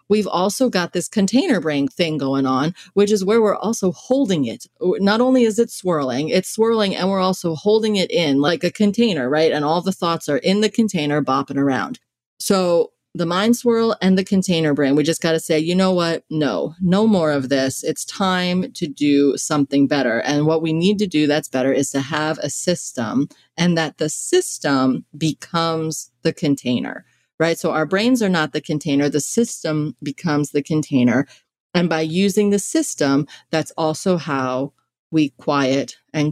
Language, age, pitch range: English, 30-49, 140-190 Hz